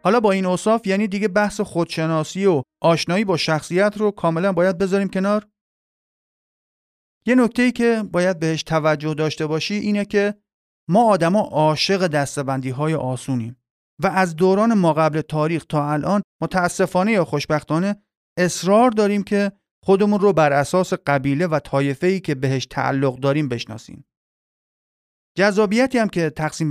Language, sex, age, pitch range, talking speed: Persian, male, 30-49, 150-195 Hz, 140 wpm